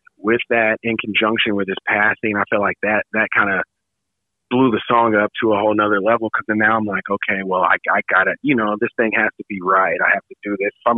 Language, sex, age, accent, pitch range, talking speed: English, male, 30-49, American, 95-110 Hz, 270 wpm